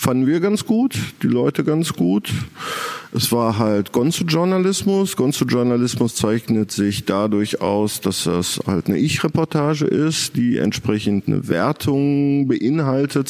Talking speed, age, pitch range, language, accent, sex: 125 wpm, 50-69, 110-145 Hz, German, German, male